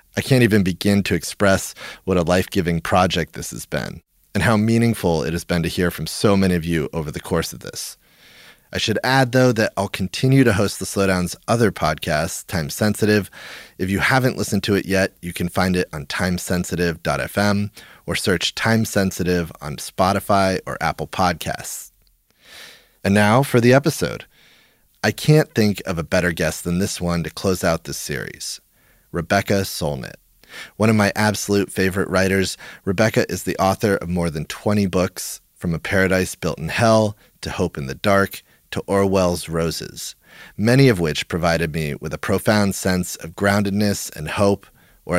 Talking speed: 180 wpm